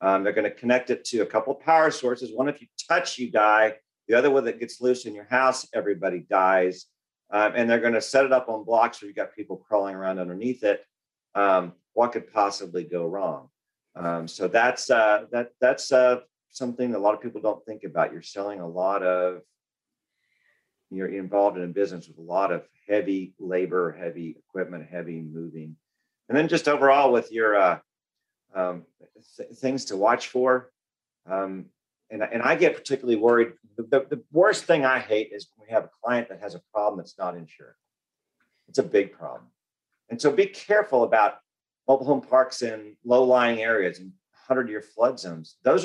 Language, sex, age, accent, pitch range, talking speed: English, male, 40-59, American, 95-130 Hz, 195 wpm